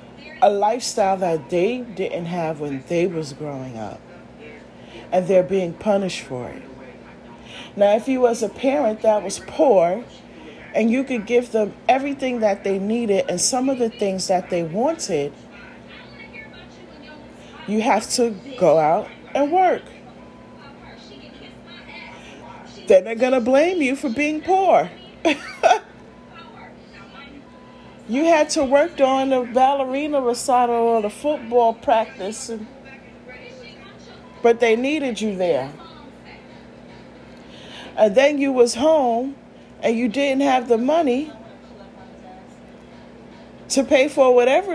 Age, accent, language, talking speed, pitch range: 40-59, American, English, 120 wpm, 210-275 Hz